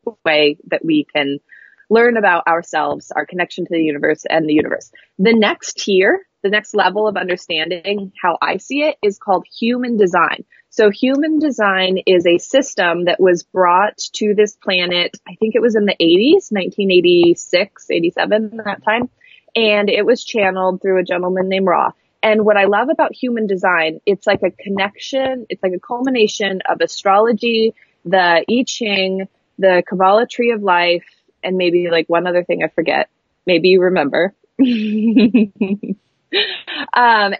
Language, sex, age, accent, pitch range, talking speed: English, female, 20-39, American, 180-225 Hz, 160 wpm